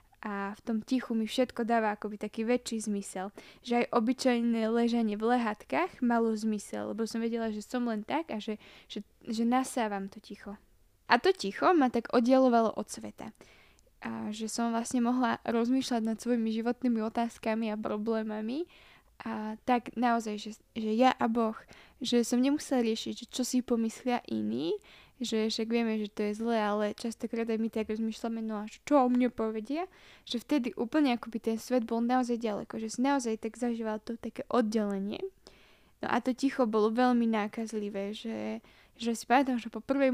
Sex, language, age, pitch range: female, Slovak, 10-29, 220-245 Hz